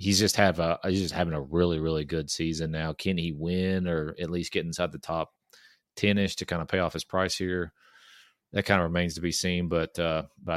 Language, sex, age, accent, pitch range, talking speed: English, male, 30-49, American, 80-90 Hz, 240 wpm